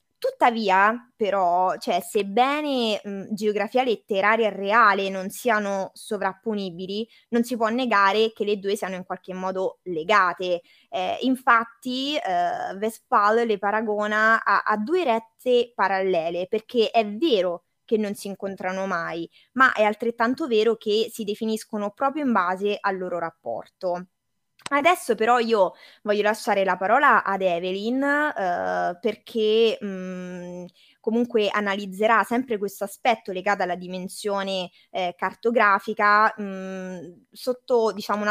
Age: 20-39